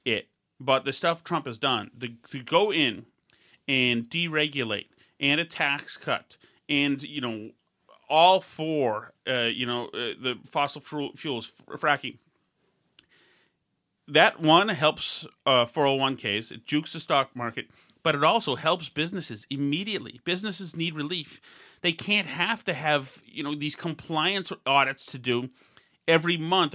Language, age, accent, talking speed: English, 30-49, American, 140 wpm